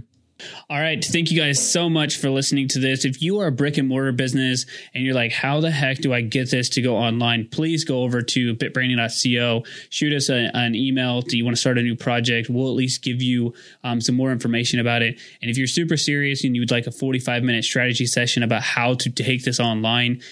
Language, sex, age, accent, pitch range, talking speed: English, male, 20-39, American, 120-135 Hz, 235 wpm